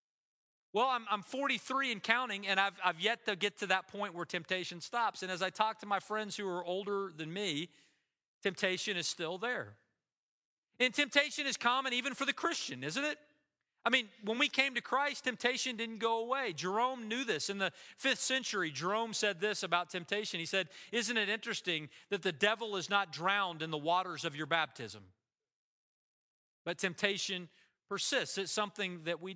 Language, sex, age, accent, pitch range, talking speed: English, male, 40-59, American, 175-230 Hz, 185 wpm